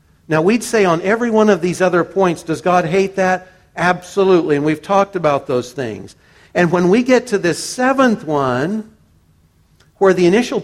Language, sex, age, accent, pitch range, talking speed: English, male, 50-69, American, 140-190 Hz, 180 wpm